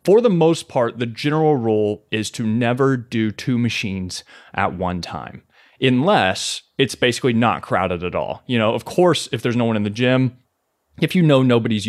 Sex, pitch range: male, 110-135 Hz